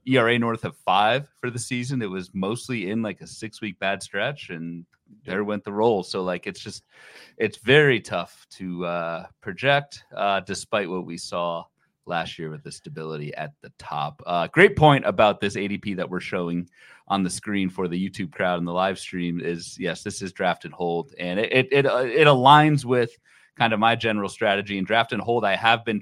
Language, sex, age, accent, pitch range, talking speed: English, male, 30-49, American, 90-115 Hz, 210 wpm